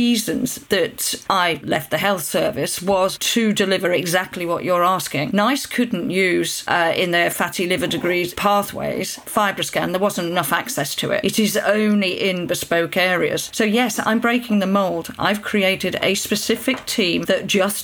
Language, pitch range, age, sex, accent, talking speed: English, 185-230 Hz, 40-59, female, British, 170 wpm